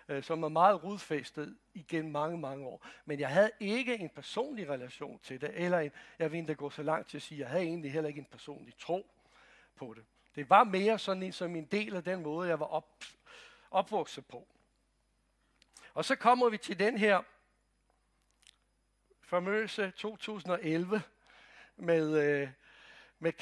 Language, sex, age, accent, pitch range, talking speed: Danish, male, 60-79, native, 155-205 Hz, 165 wpm